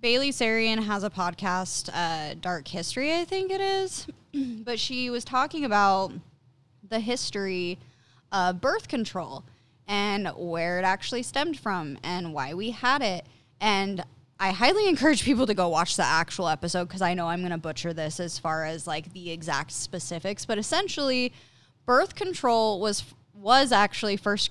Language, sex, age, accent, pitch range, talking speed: English, female, 10-29, American, 170-235 Hz, 165 wpm